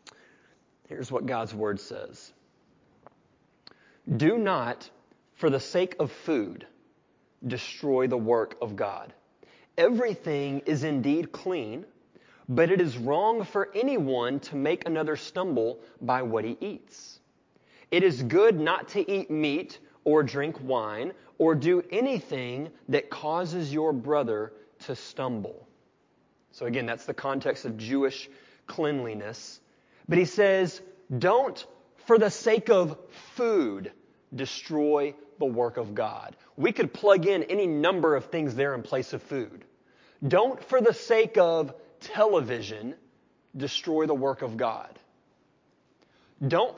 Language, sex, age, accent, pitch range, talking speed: English, male, 30-49, American, 135-180 Hz, 130 wpm